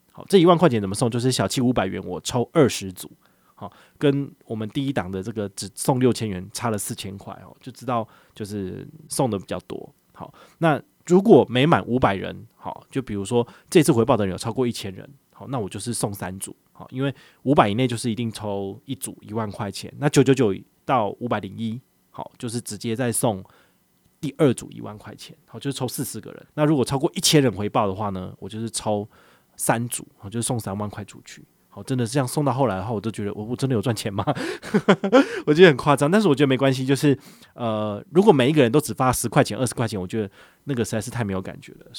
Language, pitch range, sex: Chinese, 105-140 Hz, male